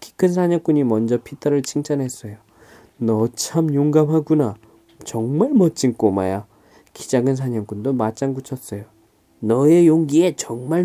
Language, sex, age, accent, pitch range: Korean, male, 20-39, native, 125-155 Hz